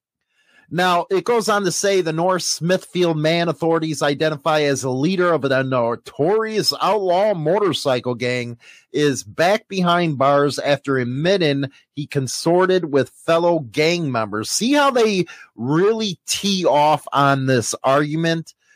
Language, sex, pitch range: English, male, 135-175 Hz